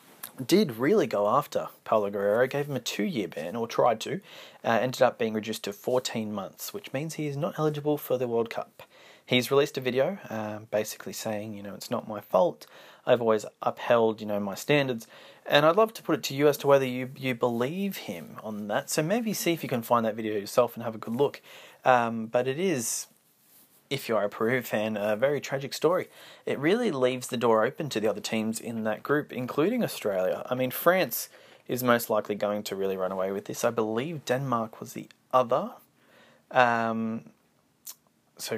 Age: 30-49